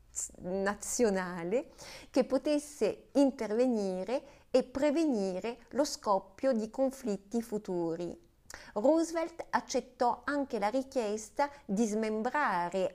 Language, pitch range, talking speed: Italian, 195-260 Hz, 85 wpm